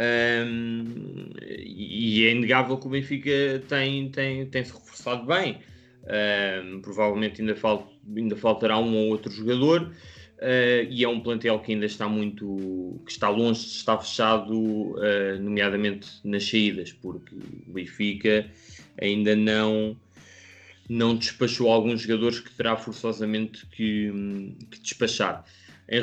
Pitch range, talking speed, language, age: 105-120 Hz, 130 wpm, Portuguese, 20-39